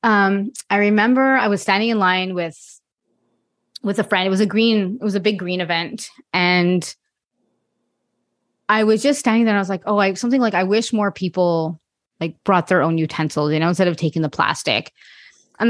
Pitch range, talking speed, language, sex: 175-215 Hz, 205 wpm, English, female